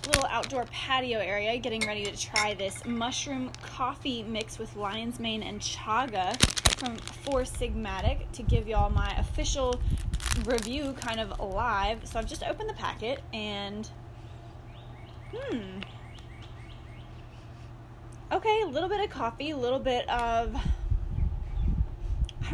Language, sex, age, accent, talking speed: English, female, 10-29, American, 130 wpm